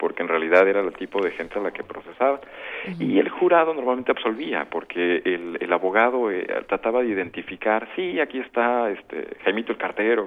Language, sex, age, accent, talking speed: Spanish, male, 50-69, Mexican, 185 wpm